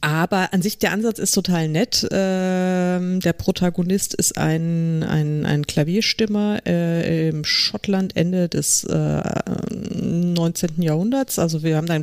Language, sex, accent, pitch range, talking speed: German, female, German, 155-190 Hz, 140 wpm